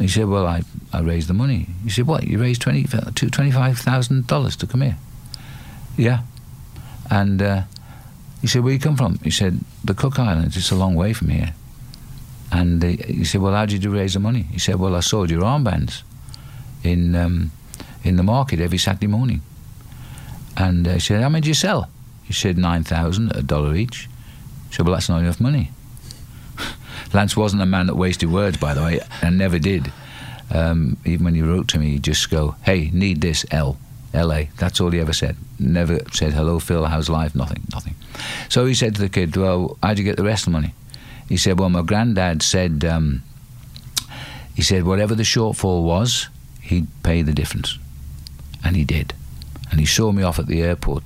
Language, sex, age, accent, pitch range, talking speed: English, male, 50-69, British, 85-125 Hz, 200 wpm